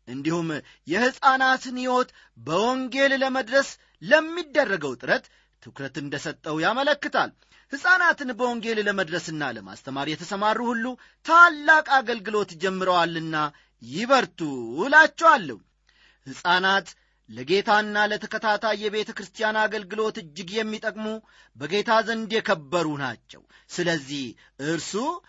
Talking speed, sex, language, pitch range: 80 wpm, male, Amharic, 160-230 Hz